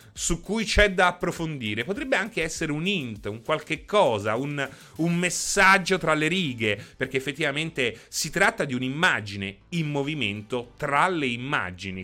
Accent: native